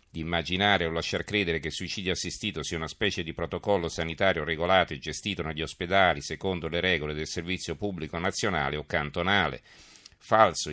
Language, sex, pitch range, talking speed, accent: Italian, male, 80-95 Hz, 170 wpm, native